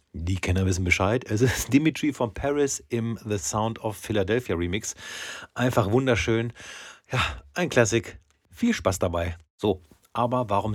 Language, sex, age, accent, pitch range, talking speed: German, male, 40-59, German, 95-125 Hz, 145 wpm